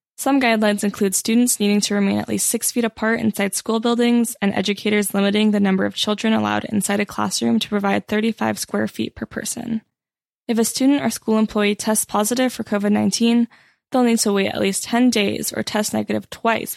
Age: 10-29